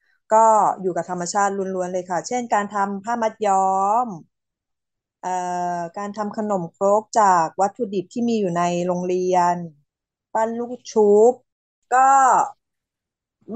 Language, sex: Thai, female